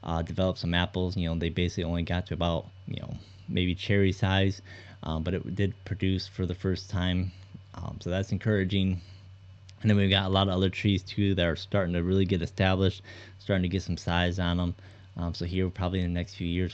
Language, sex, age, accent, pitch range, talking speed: English, male, 20-39, American, 85-95 Hz, 225 wpm